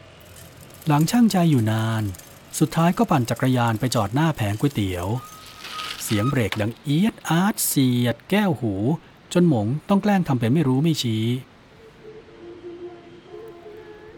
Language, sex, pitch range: Thai, male, 115-170 Hz